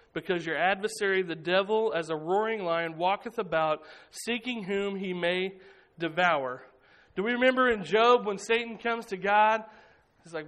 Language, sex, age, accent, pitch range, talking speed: English, male, 40-59, American, 180-235 Hz, 160 wpm